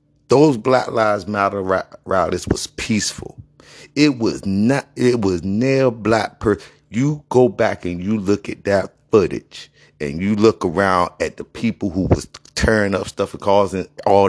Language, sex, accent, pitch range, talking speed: English, male, American, 100-145 Hz, 170 wpm